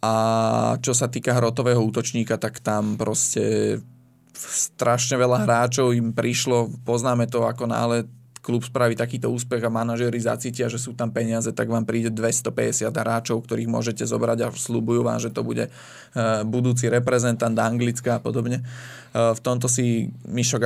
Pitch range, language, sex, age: 115-125 Hz, Slovak, male, 20-39